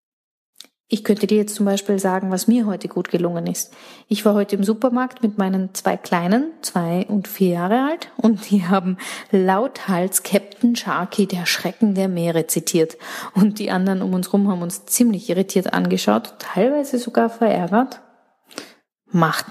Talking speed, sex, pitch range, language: 165 wpm, female, 190-230 Hz, German